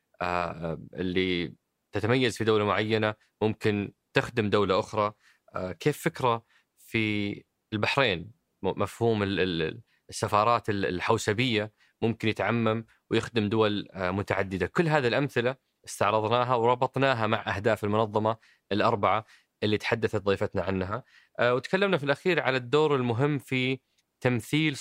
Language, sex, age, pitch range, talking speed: Arabic, male, 20-39, 105-125 Hz, 110 wpm